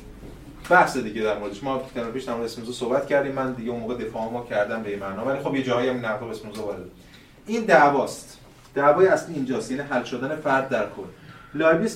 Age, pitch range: 30-49, 120-145 Hz